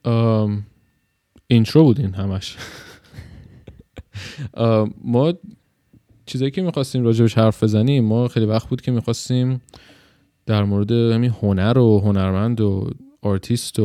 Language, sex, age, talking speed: Persian, male, 20-39, 115 wpm